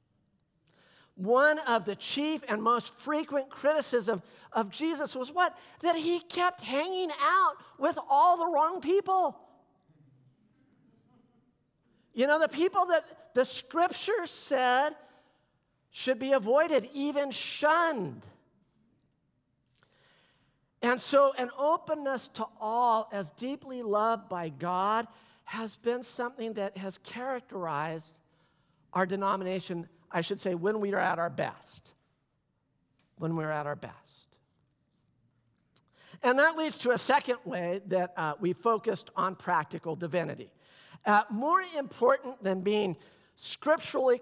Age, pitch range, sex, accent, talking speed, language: 50-69, 180-285 Hz, male, American, 120 wpm, English